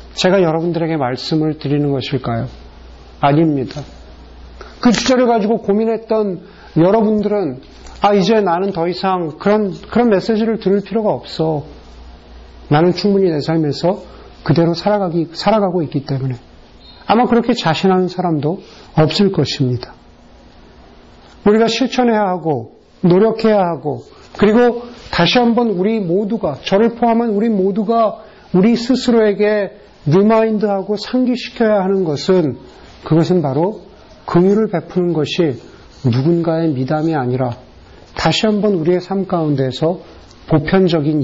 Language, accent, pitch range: Korean, native, 150-210 Hz